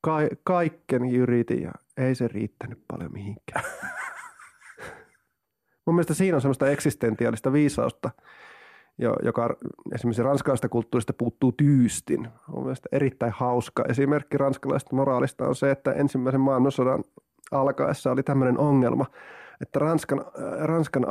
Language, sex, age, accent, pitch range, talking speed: Finnish, male, 30-49, native, 130-180 Hz, 110 wpm